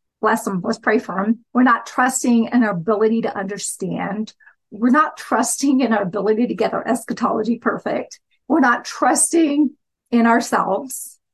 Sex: female